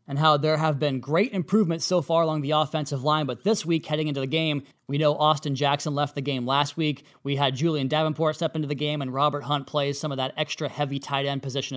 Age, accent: 20-39, American